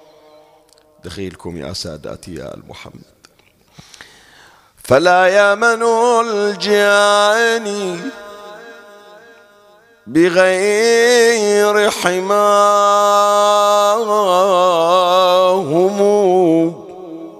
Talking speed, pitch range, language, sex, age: 35 wpm, 180-210 Hz, Arabic, male, 50-69